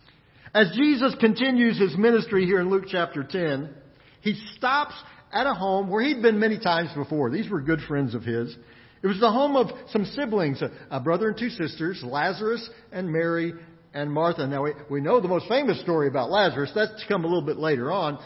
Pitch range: 145-210 Hz